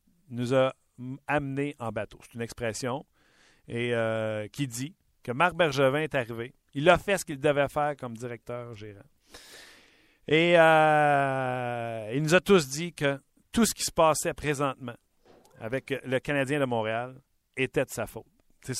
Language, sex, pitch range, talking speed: French, male, 125-155 Hz, 165 wpm